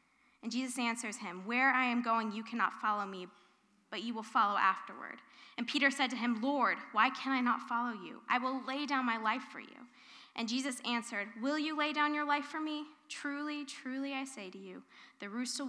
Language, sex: English, female